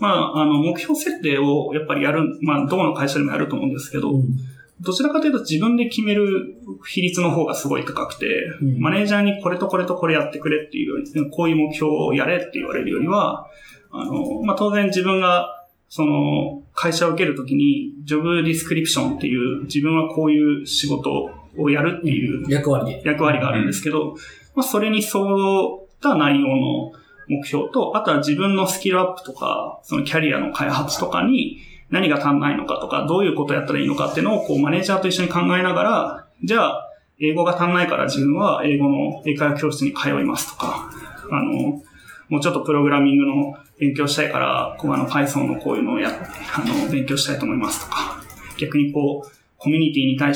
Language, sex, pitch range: Japanese, male, 145-185 Hz